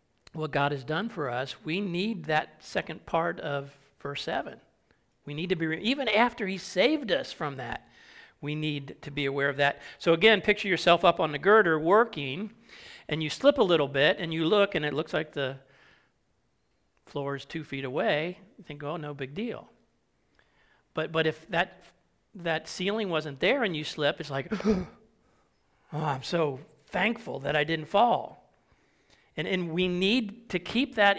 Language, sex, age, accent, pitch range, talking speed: English, male, 40-59, American, 145-200 Hz, 180 wpm